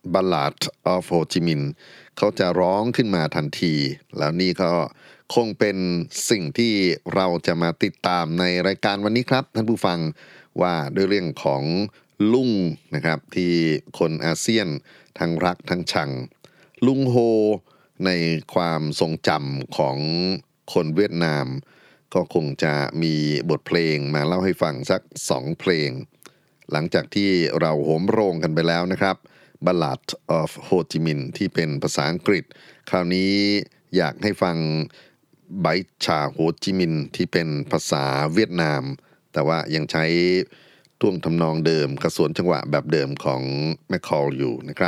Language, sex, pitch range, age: Thai, male, 80-95 Hz, 30-49